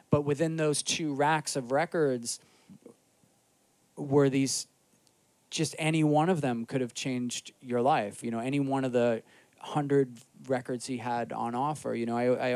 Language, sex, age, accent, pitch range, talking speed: English, male, 20-39, American, 115-140 Hz, 165 wpm